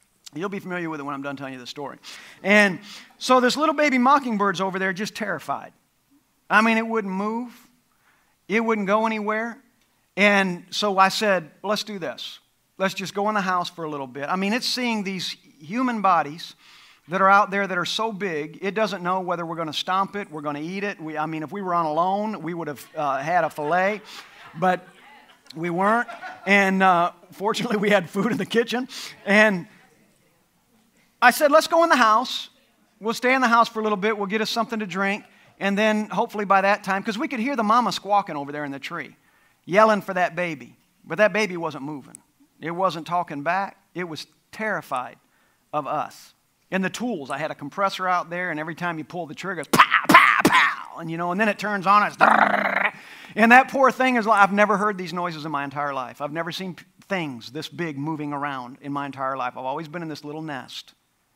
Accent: American